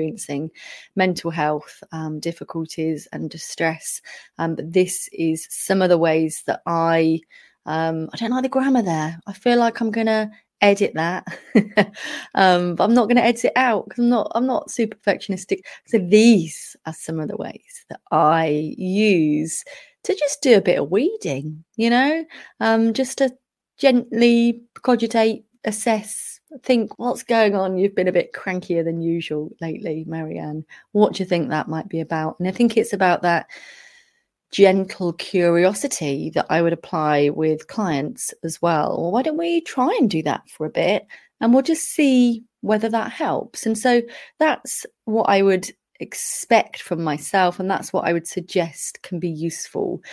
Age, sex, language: 30-49, female, English